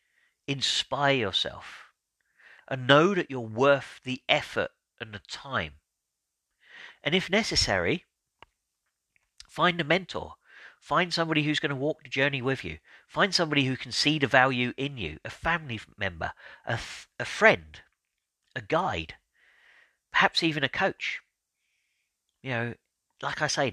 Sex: male